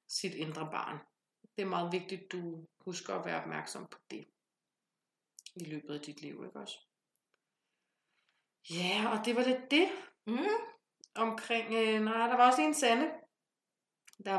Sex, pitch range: female, 165-205 Hz